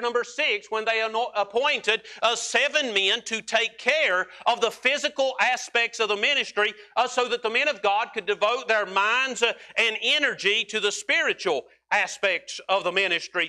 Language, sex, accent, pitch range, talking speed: English, male, American, 200-245 Hz, 175 wpm